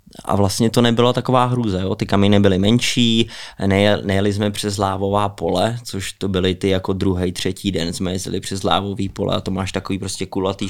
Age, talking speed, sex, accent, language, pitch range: 20-39, 195 wpm, male, native, Czech, 95-105 Hz